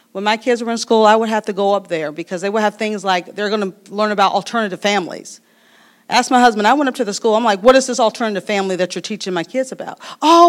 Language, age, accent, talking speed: English, 40-59, American, 275 wpm